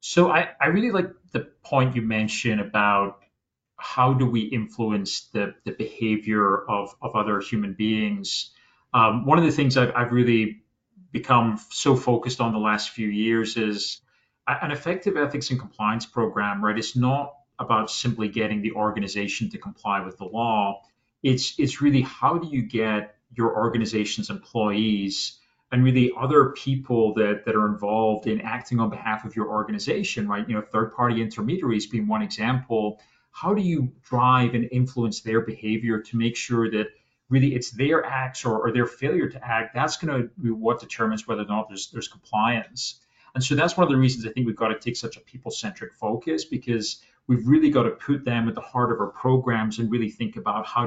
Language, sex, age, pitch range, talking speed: English, male, 40-59, 110-130 Hz, 190 wpm